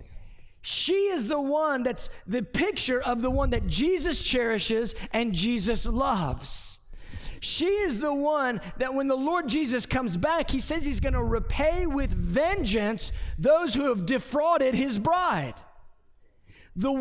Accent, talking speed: American, 145 wpm